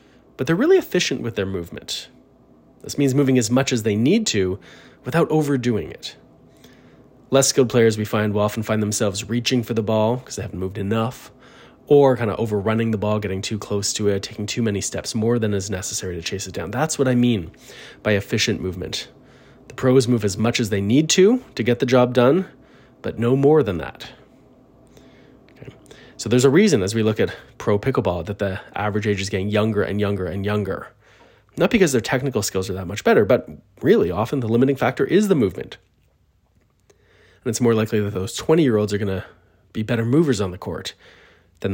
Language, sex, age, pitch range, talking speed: English, male, 20-39, 100-130 Hz, 205 wpm